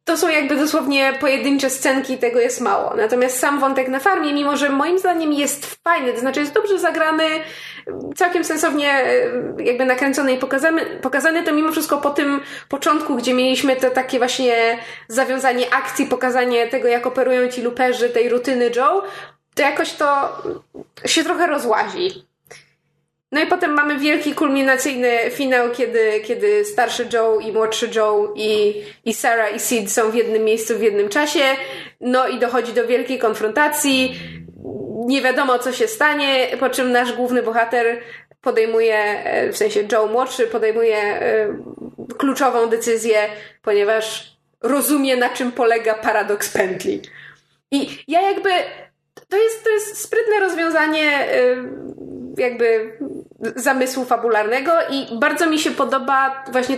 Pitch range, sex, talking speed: 235-300 Hz, female, 140 wpm